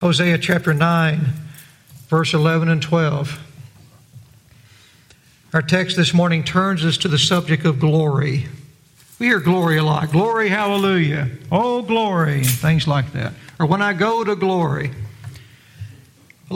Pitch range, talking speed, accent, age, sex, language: 140-175 Hz, 135 wpm, American, 60-79, male, English